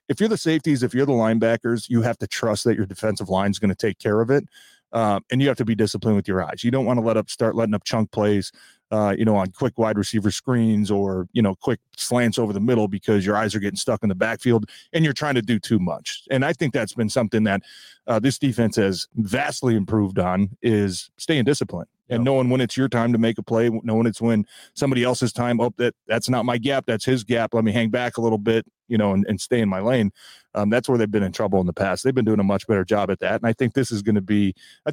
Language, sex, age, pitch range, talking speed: English, male, 30-49, 105-125 Hz, 275 wpm